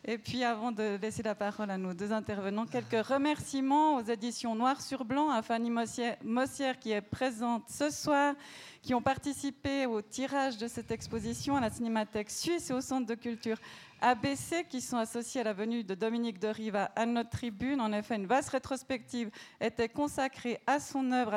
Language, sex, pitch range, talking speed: French, female, 220-270 Hz, 190 wpm